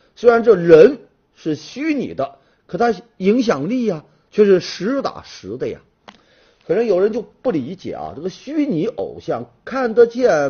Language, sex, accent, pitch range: Chinese, male, native, 155-245 Hz